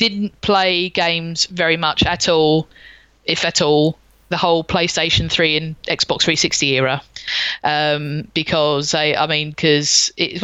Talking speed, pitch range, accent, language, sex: 145 wpm, 160-190 Hz, British, English, female